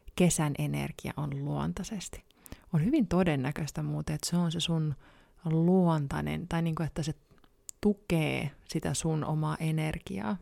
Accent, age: native, 30-49